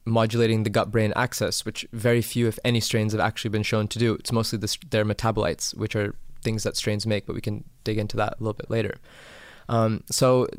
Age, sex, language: 20-39, male, English